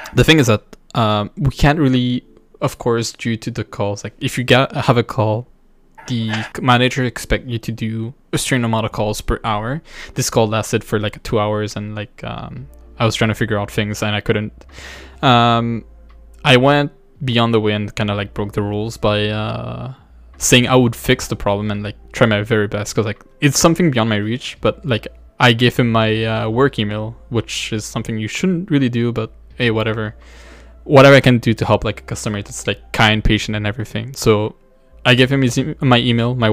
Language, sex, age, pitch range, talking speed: English, male, 10-29, 105-120 Hz, 210 wpm